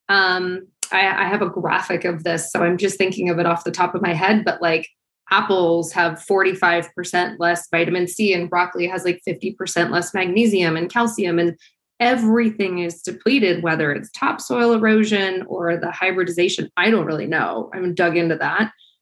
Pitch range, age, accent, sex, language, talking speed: 180-225 Hz, 20-39, American, female, English, 175 wpm